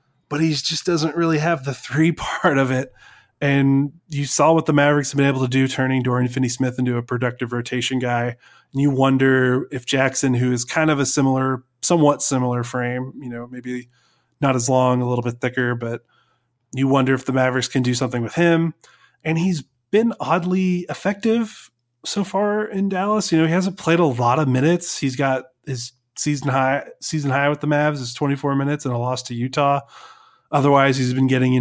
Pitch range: 125-150 Hz